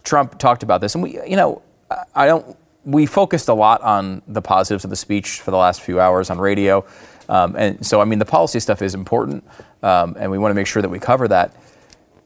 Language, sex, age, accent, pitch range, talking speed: English, male, 30-49, American, 100-150 Hz, 235 wpm